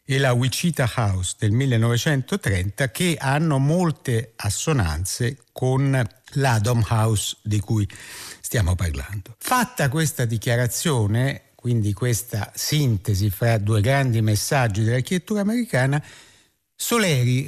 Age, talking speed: 60-79, 105 wpm